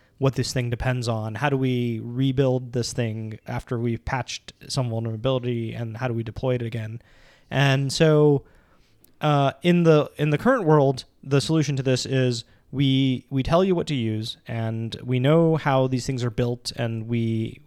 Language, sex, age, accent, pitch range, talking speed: English, male, 20-39, American, 115-135 Hz, 185 wpm